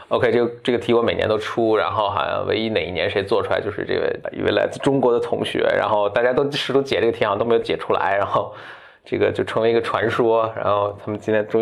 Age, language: 20-39, Chinese